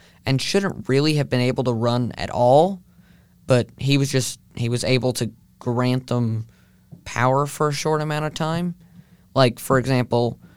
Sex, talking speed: male, 170 wpm